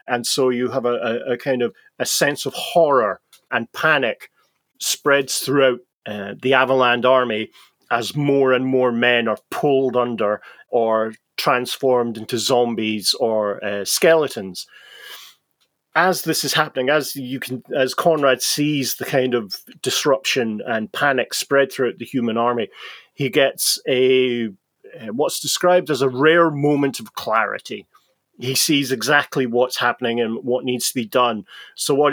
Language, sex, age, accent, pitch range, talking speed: English, male, 40-59, British, 120-140 Hz, 155 wpm